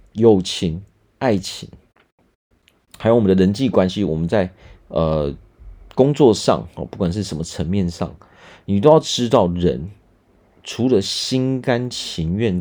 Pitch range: 85-115 Hz